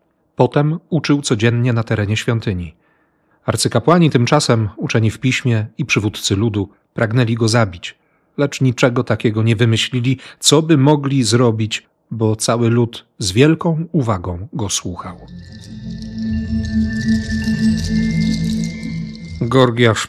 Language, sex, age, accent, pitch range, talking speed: Polish, male, 40-59, native, 110-135 Hz, 105 wpm